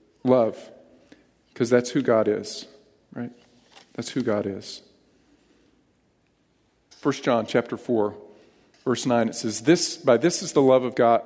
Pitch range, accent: 115-140 Hz, American